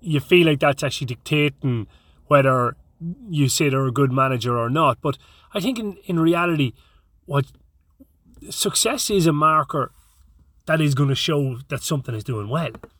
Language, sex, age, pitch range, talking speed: English, male, 30-49, 125-155 Hz, 165 wpm